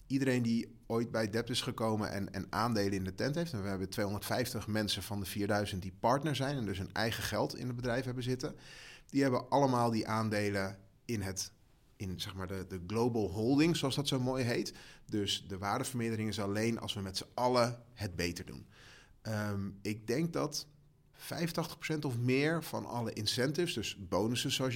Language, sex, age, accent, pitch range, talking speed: English, male, 30-49, Dutch, 105-130 Hz, 195 wpm